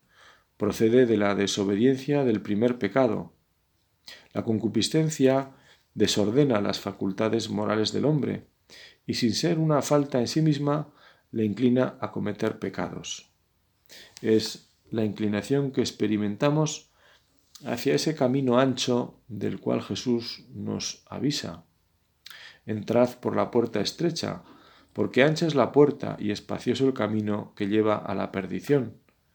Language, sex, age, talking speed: Spanish, male, 40-59, 125 wpm